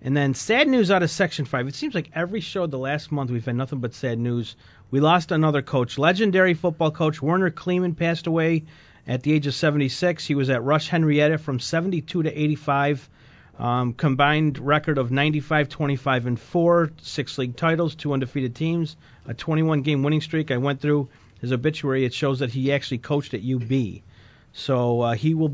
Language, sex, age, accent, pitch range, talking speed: English, male, 40-59, American, 125-155 Hz, 195 wpm